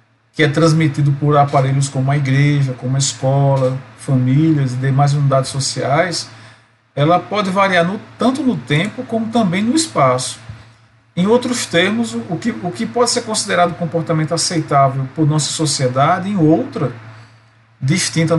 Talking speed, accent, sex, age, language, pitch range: 140 wpm, Brazilian, male, 40-59, Portuguese, 135-170 Hz